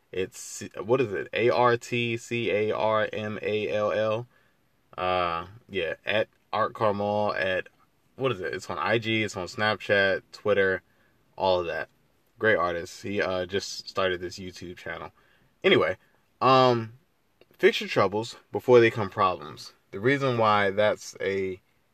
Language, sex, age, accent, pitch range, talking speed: English, male, 20-39, American, 95-120 Hz, 155 wpm